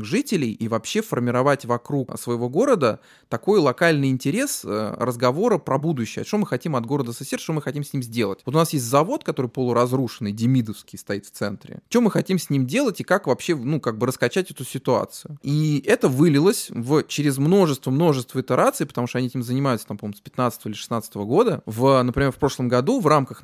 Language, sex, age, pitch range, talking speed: Russian, male, 20-39, 120-145 Hz, 200 wpm